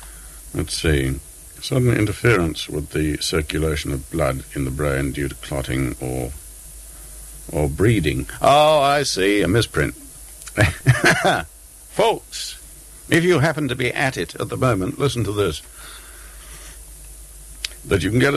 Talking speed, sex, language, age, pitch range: 135 wpm, male, English, 60-79, 75-120 Hz